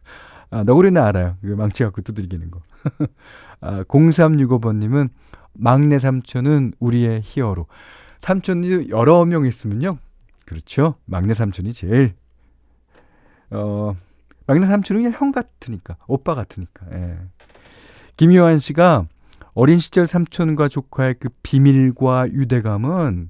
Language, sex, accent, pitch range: Korean, male, native, 90-145 Hz